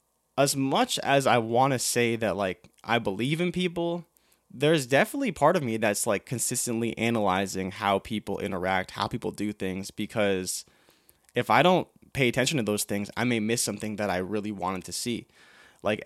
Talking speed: 185 wpm